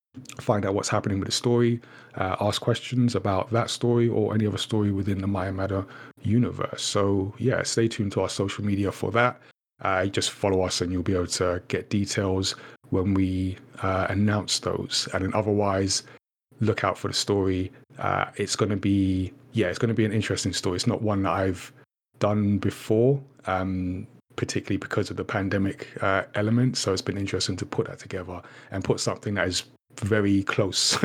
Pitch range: 95-120 Hz